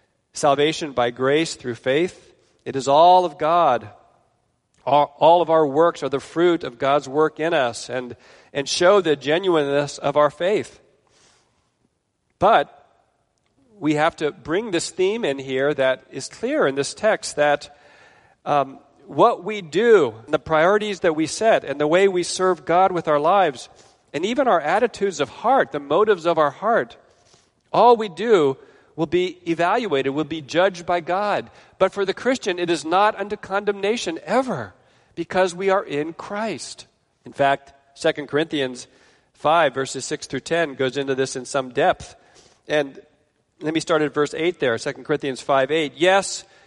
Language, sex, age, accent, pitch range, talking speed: English, male, 40-59, American, 140-185 Hz, 165 wpm